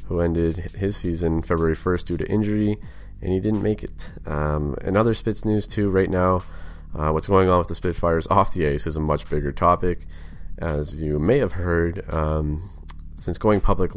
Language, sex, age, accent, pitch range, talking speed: English, male, 30-49, American, 80-95 Hz, 195 wpm